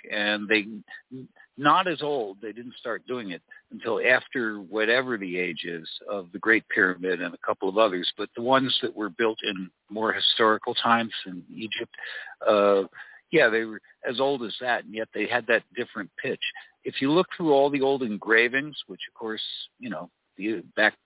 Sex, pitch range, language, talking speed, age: male, 105-140 Hz, English, 190 wpm, 60-79